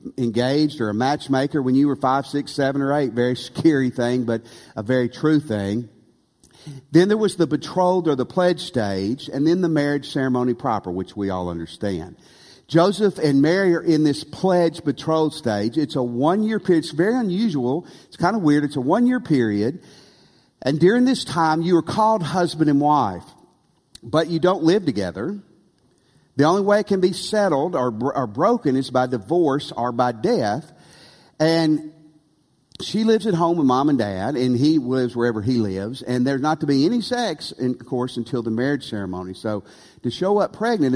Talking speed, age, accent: 190 wpm, 50-69, American